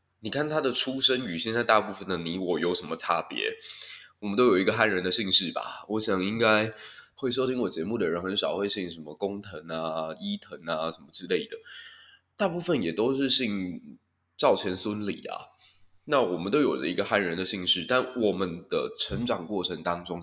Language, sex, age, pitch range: Chinese, male, 20-39, 95-125 Hz